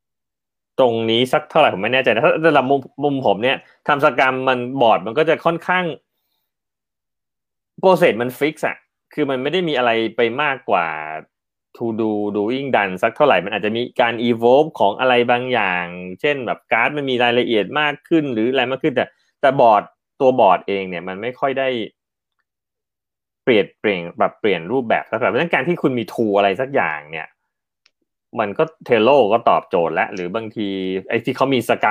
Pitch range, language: 105-140 Hz, Thai